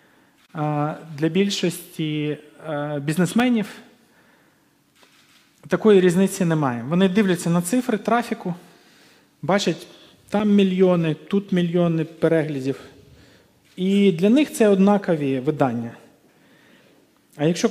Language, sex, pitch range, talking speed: Ukrainian, male, 145-190 Hz, 85 wpm